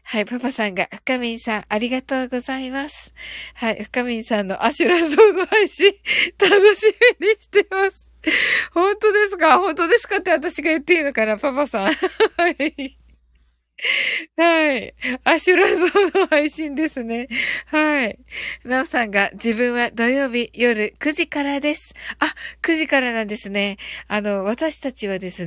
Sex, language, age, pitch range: female, Japanese, 20-39, 215-325 Hz